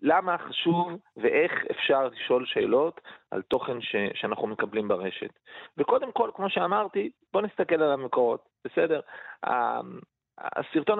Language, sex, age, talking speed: Hebrew, male, 30-49, 125 wpm